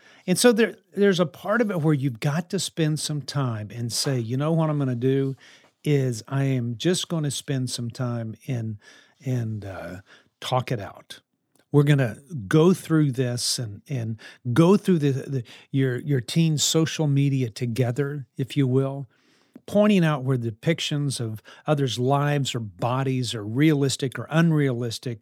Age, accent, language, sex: 50-69, American, English, male